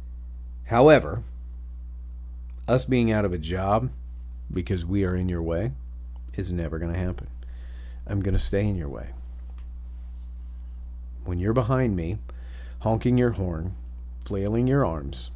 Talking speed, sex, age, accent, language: 135 wpm, male, 40-59, American, English